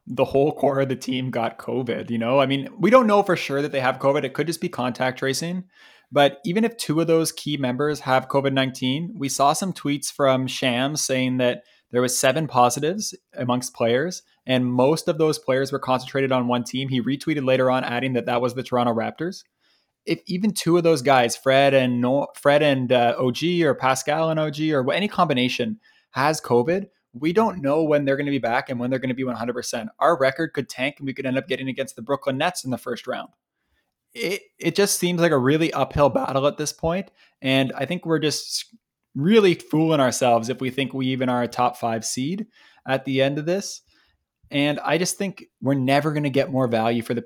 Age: 20-39